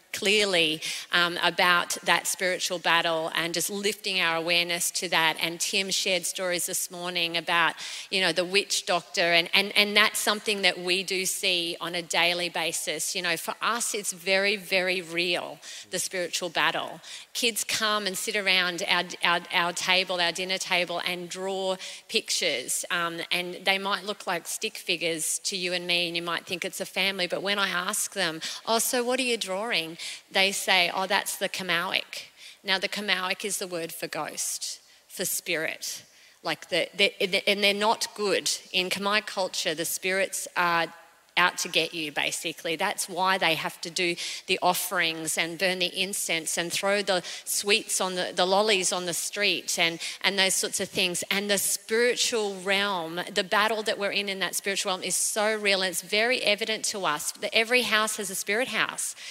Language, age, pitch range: English, 30-49, 175-200 Hz